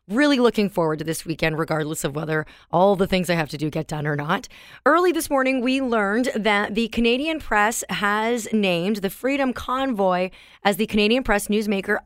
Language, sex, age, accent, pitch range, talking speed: English, female, 30-49, American, 175-235 Hz, 195 wpm